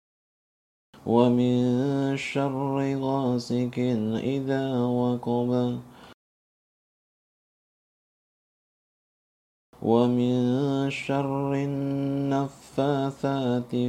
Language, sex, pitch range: Indonesian, male, 120-140 Hz